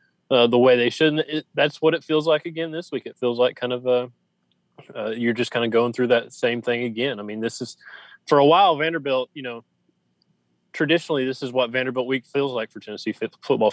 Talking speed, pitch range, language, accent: 225 wpm, 110-130 Hz, English, American